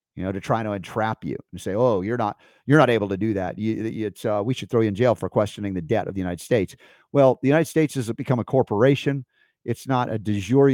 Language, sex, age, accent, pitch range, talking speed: English, male, 50-69, American, 105-140 Hz, 270 wpm